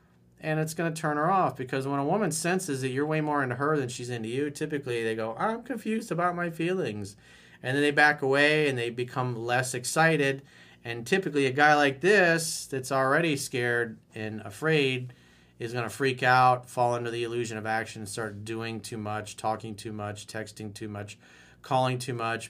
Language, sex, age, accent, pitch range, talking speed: English, male, 40-59, American, 110-145 Hz, 200 wpm